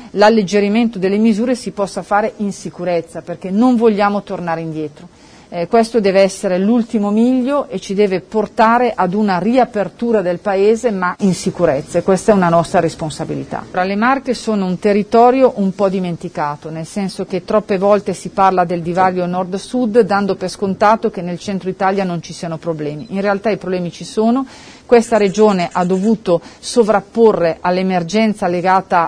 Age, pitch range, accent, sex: 40-59, 180-220 Hz, native, female